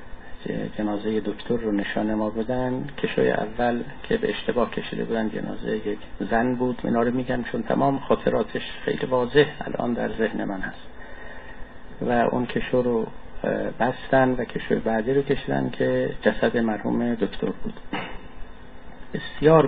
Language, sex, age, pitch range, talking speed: Persian, male, 50-69, 110-125 Hz, 135 wpm